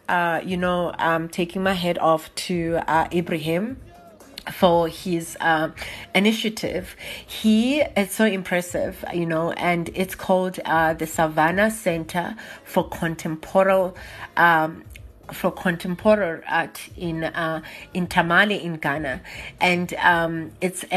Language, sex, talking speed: English, female, 125 wpm